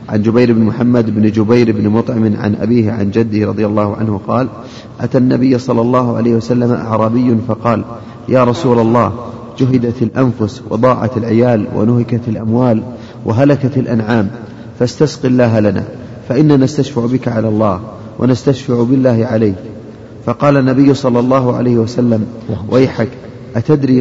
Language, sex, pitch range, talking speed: Arabic, male, 115-125 Hz, 135 wpm